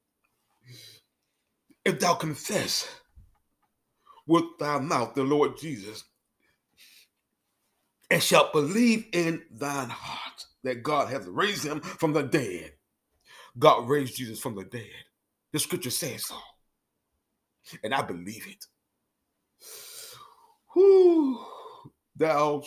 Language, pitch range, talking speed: English, 135-200 Hz, 100 wpm